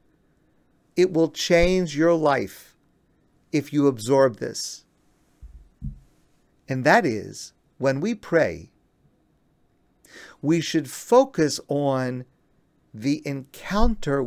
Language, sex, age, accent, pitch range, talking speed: English, male, 50-69, American, 130-175 Hz, 90 wpm